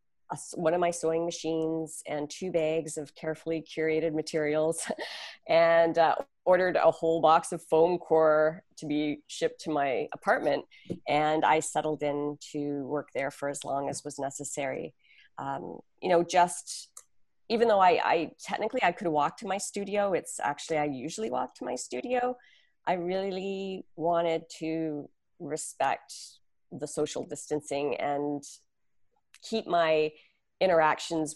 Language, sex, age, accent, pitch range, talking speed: English, female, 30-49, American, 150-175 Hz, 145 wpm